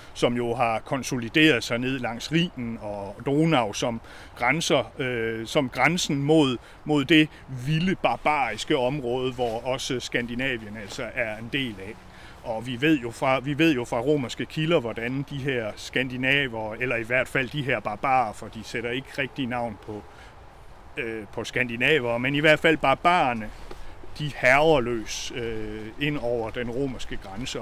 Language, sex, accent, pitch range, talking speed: Danish, male, native, 115-145 Hz, 165 wpm